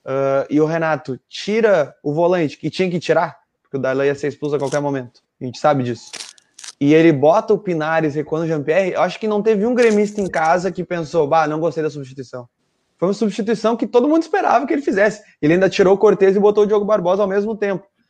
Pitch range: 150-210 Hz